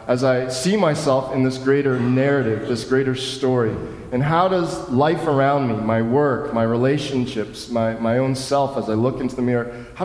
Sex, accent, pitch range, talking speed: male, American, 125-155 Hz, 190 wpm